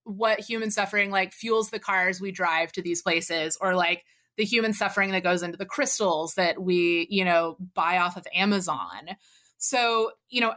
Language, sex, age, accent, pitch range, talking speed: English, female, 30-49, American, 185-225 Hz, 185 wpm